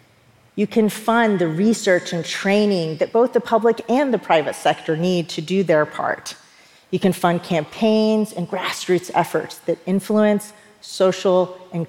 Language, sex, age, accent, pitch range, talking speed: English, female, 40-59, American, 165-205 Hz, 155 wpm